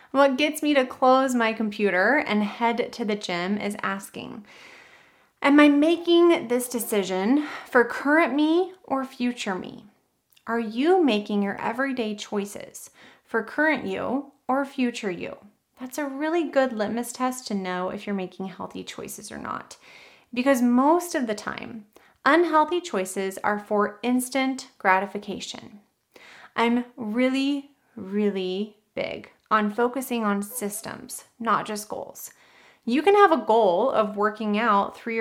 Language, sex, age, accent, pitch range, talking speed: English, female, 30-49, American, 205-270 Hz, 140 wpm